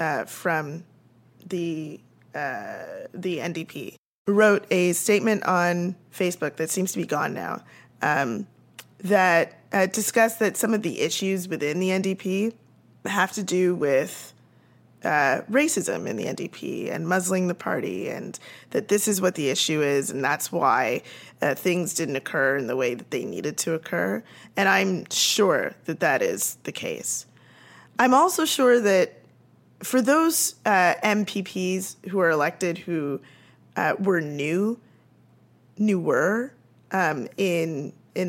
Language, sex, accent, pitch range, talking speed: English, female, American, 160-205 Hz, 145 wpm